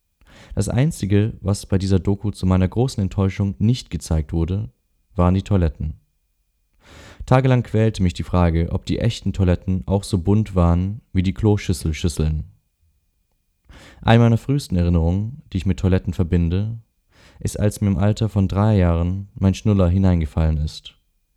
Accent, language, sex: German, German, male